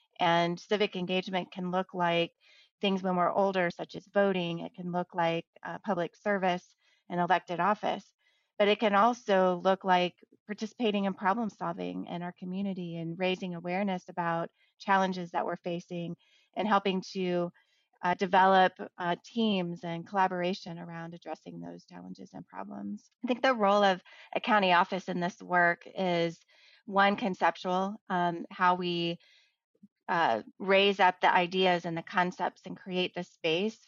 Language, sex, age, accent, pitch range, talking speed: English, female, 30-49, American, 175-195 Hz, 155 wpm